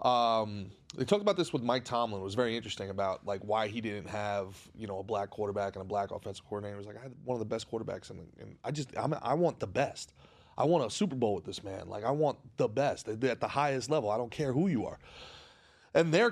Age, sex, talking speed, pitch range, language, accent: 30-49, male, 270 wpm, 110-145 Hz, English, American